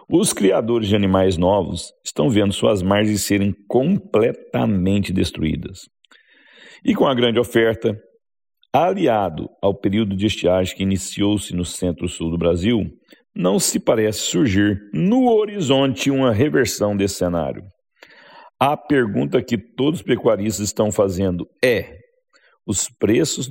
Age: 60-79